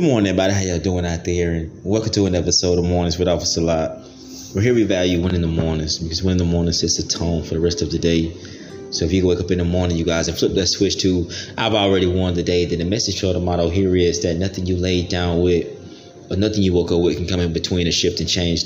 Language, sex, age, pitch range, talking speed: English, male, 20-39, 85-90 Hz, 285 wpm